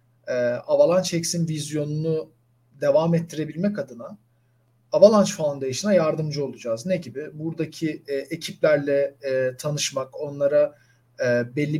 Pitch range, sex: 120-165 Hz, male